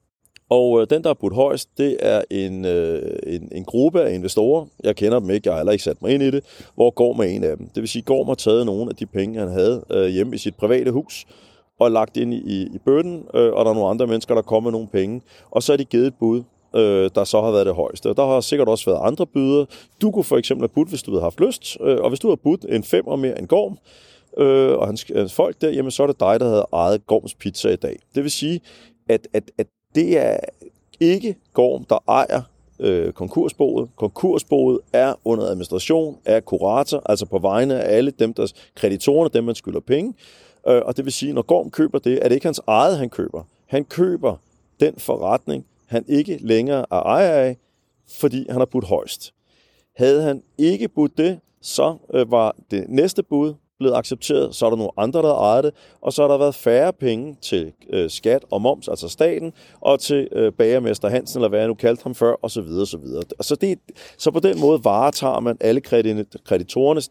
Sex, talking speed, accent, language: male, 230 wpm, native, Danish